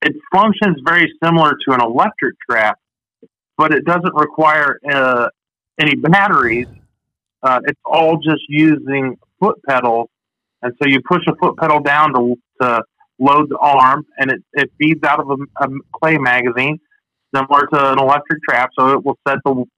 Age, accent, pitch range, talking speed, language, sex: 40-59, American, 135-160 Hz, 165 wpm, English, male